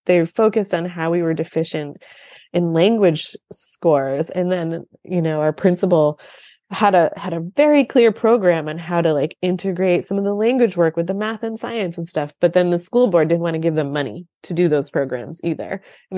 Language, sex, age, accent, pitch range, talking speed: English, female, 20-39, American, 170-225 Hz, 210 wpm